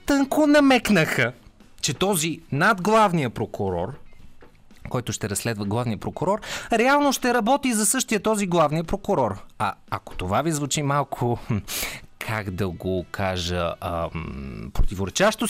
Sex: male